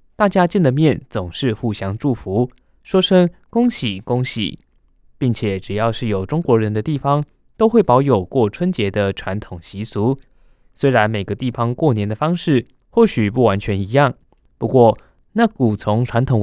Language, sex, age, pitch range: Chinese, male, 20-39, 105-150 Hz